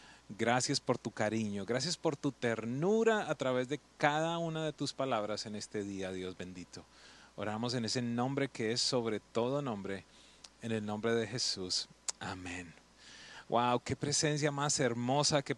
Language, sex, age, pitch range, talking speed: English, male, 30-49, 115-145 Hz, 160 wpm